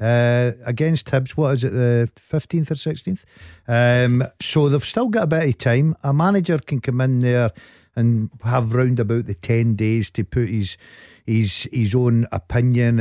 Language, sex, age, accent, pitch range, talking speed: English, male, 50-69, British, 115-140 Hz, 175 wpm